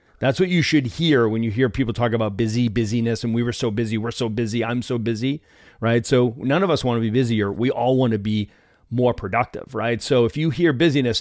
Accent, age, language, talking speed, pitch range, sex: American, 40-59, English, 235 wpm, 115-135 Hz, male